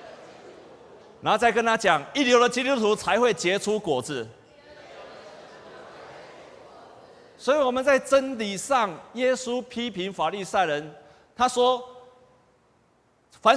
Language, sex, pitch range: Chinese, male, 180-280 Hz